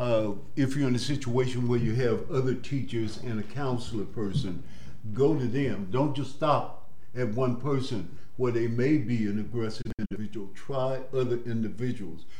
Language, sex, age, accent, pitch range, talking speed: English, male, 60-79, American, 105-130 Hz, 165 wpm